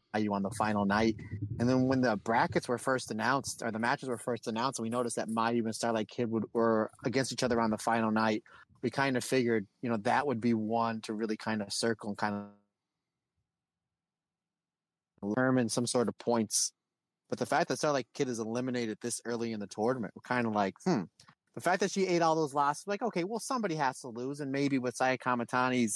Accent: American